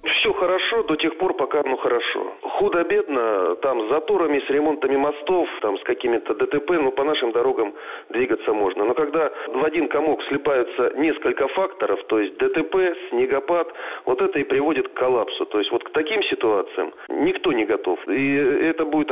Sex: male